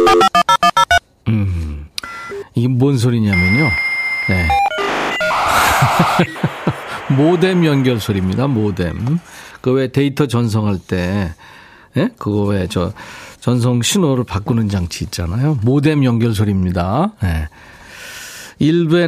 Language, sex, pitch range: Korean, male, 105-155 Hz